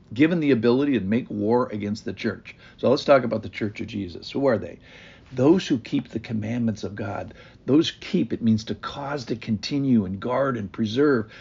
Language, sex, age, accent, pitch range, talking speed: English, male, 60-79, American, 105-140 Hz, 205 wpm